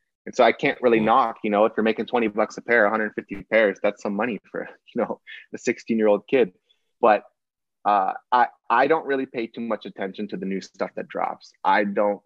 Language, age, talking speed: English, 20-39, 225 wpm